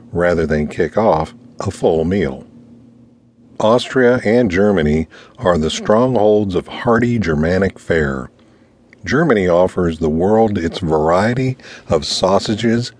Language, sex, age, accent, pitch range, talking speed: English, male, 50-69, American, 85-115 Hz, 115 wpm